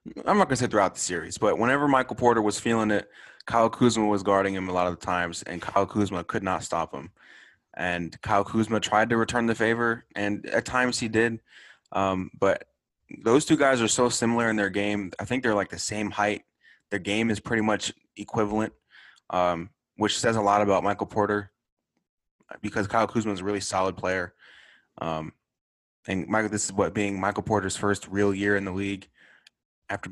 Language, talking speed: English, 200 wpm